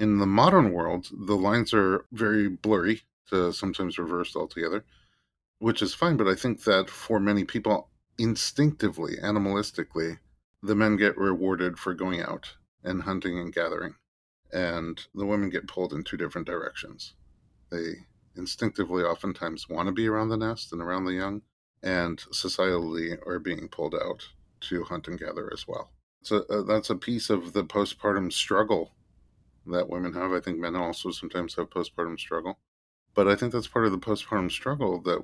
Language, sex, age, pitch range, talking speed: English, male, 40-59, 85-105 Hz, 165 wpm